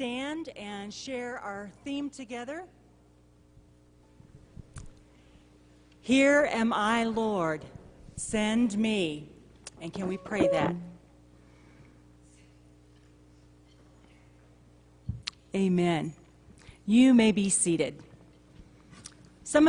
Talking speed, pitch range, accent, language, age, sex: 65 wpm, 175-235 Hz, American, English, 40-59, female